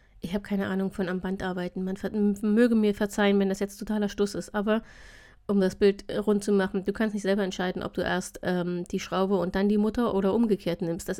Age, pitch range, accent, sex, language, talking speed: 30-49, 195-245 Hz, German, female, German, 235 wpm